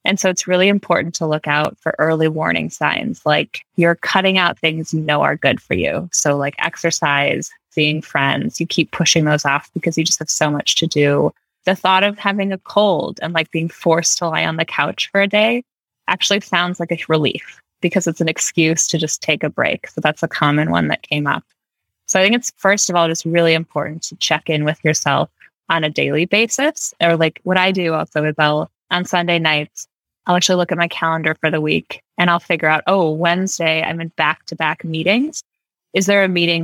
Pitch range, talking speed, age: 155-185 Hz, 220 wpm, 20-39